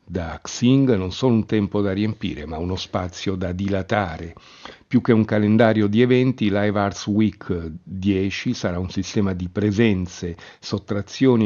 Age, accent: 50-69, native